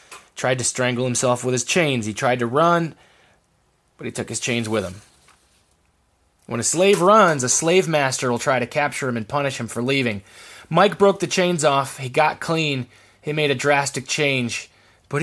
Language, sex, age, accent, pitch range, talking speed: English, male, 20-39, American, 115-155 Hz, 195 wpm